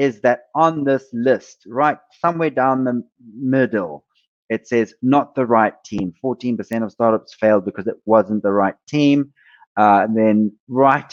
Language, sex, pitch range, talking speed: English, male, 115-145 Hz, 160 wpm